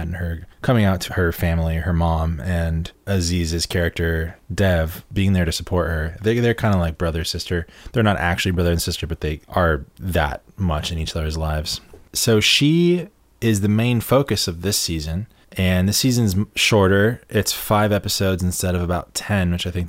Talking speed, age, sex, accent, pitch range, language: 185 wpm, 20-39, male, American, 80-100 Hz, English